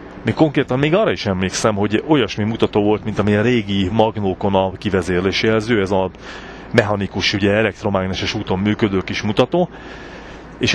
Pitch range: 95-115 Hz